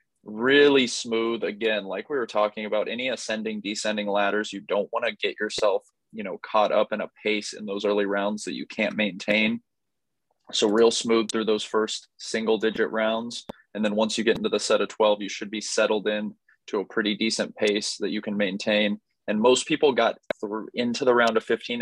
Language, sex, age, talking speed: English, male, 20-39, 205 wpm